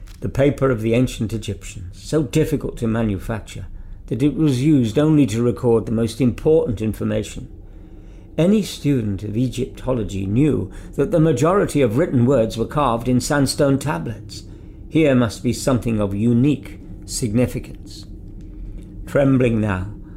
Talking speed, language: 135 wpm, English